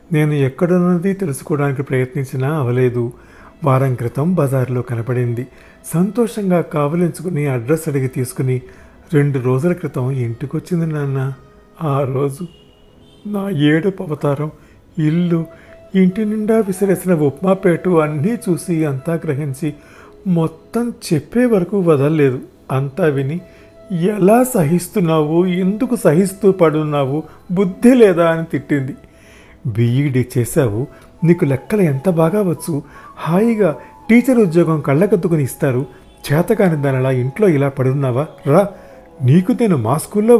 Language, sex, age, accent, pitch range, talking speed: Telugu, male, 50-69, native, 135-185 Hz, 100 wpm